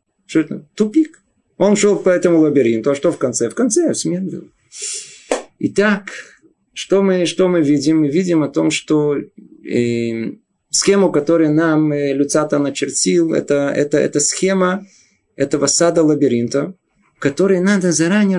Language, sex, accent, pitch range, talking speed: Russian, male, native, 160-215 Hz, 140 wpm